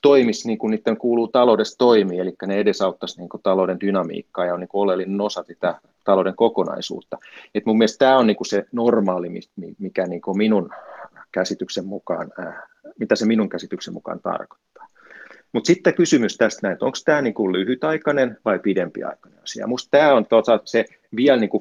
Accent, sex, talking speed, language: native, male, 145 wpm, Finnish